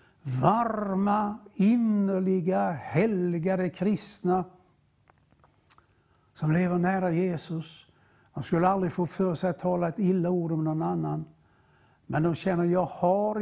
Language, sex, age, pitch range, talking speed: English, male, 60-79, 165-195 Hz, 115 wpm